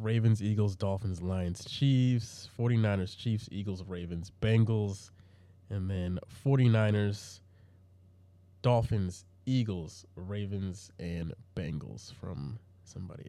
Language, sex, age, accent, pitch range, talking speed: English, male, 20-39, American, 95-115 Hz, 90 wpm